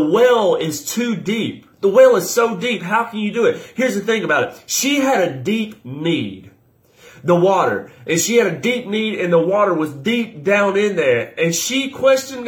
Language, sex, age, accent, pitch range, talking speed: English, male, 30-49, American, 180-245 Hz, 215 wpm